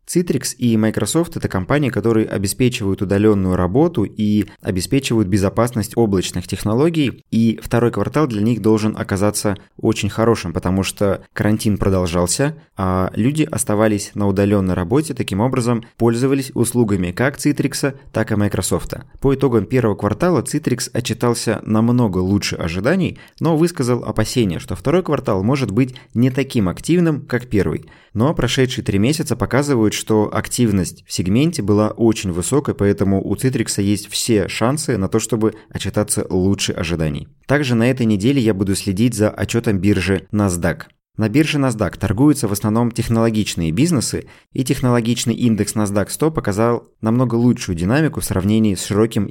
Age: 20-39